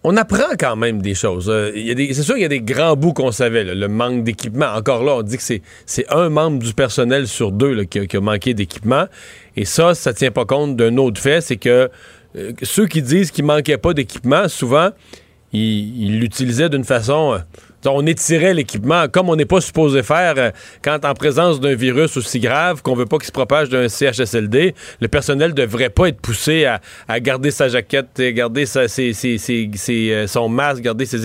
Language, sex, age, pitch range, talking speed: French, male, 40-59, 120-155 Hz, 225 wpm